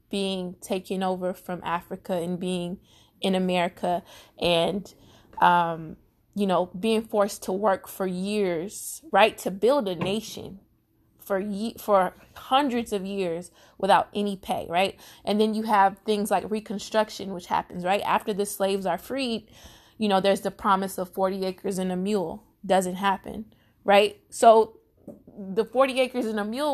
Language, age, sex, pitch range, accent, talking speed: English, 20-39, female, 185-215 Hz, American, 155 wpm